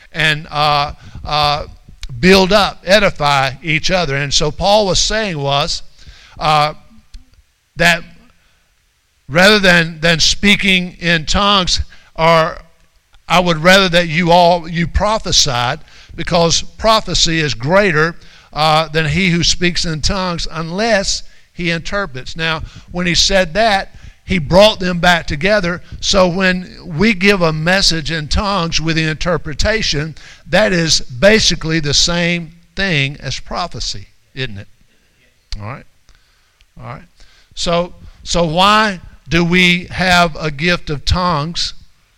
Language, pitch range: English, 145-180 Hz